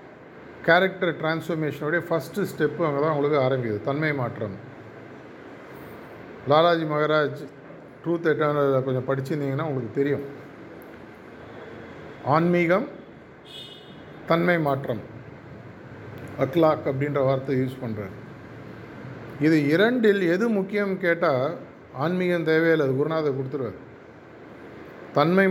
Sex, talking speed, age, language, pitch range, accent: male, 85 wpm, 50-69, Tamil, 140-170 Hz, native